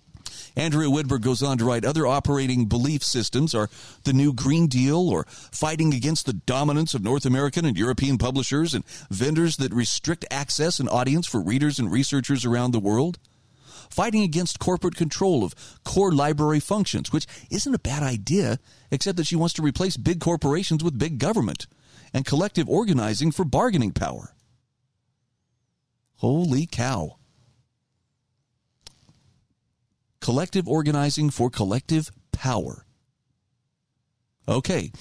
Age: 40-59